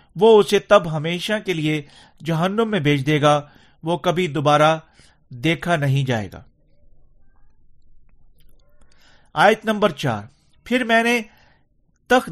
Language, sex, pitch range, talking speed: Urdu, male, 150-210 Hz, 120 wpm